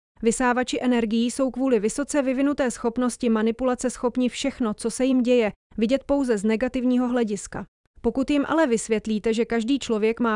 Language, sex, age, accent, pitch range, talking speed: English, female, 30-49, Czech, 225-260 Hz, 155 wpm